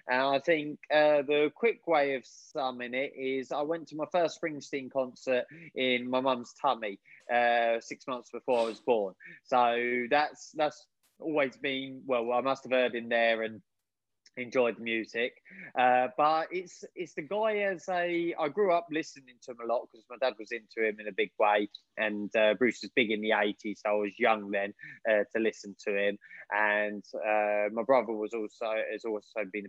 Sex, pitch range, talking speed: male, 115-150 Hz, 200 wpm